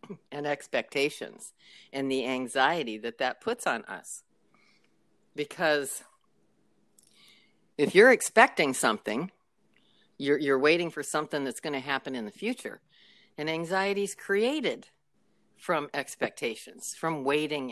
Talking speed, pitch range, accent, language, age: 120 wpm, 135-220 Hz, American, English, 50-69